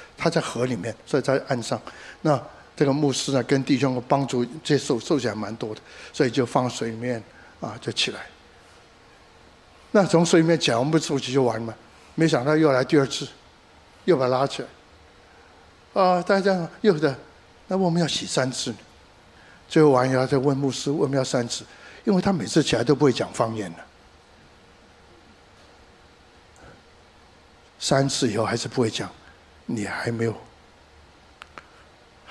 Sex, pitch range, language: male, 115-145 Hz, Chinese